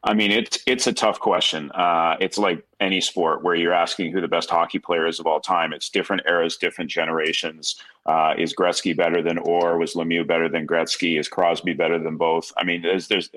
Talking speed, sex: 220 wpm, male